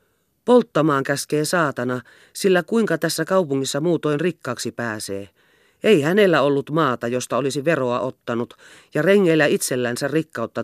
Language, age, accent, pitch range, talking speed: Finnish, 40-59, native, 125-175 Hz, 125 wpm